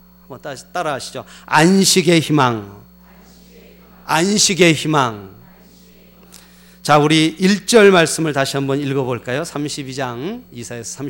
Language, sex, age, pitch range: Korean, male, 40-59, 130-200 Hz